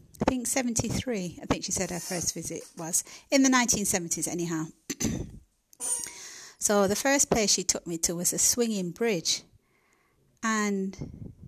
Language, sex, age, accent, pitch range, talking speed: English, female, 30-49, British, 165-215 Hz, 145 wpm